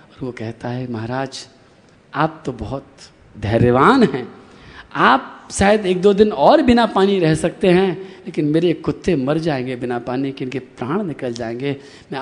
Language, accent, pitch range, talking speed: Hindi, native, 135-230 Hz, 165 wpm